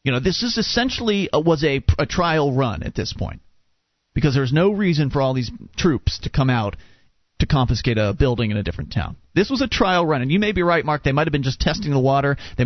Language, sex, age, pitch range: English, male, 30-49, 125-155 Hz